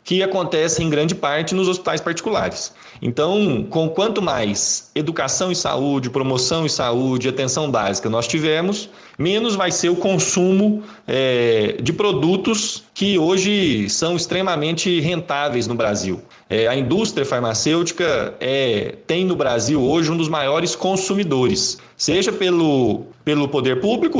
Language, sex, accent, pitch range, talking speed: Portuguese, male, Brazilian, 125-180 Hz, 130 wpm